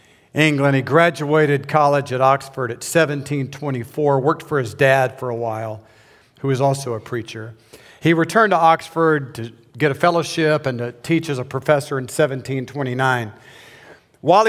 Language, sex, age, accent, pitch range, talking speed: English, male, 50-69, American, 125-155 Hz, 155 wpm